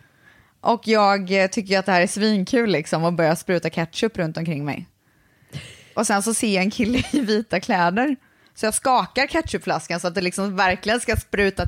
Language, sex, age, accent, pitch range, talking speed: Swedish, female, 20-39, native, 170-210 Hz, 190 wpm